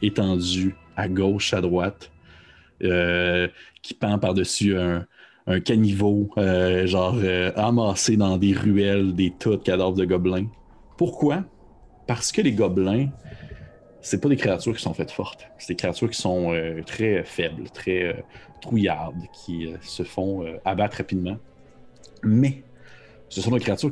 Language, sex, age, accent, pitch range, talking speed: French, male, 30-49, Canadian, 90-110 Hz, 155 wpm